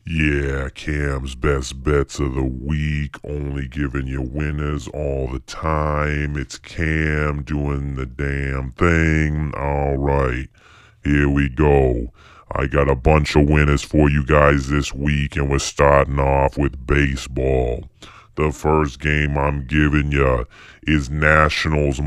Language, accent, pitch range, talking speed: English, American, 70-75 Hz, 135 wpm